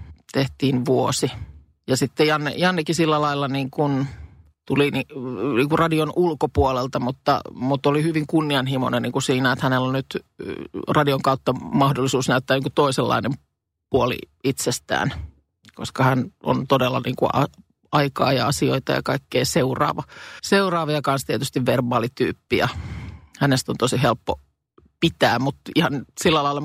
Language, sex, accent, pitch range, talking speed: Finnish, male, native, 125-155 Hz, 130 wpm